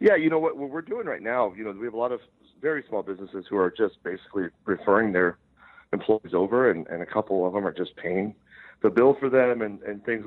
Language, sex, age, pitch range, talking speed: English, male, 40-59, 95-125 Hz, 245 wpm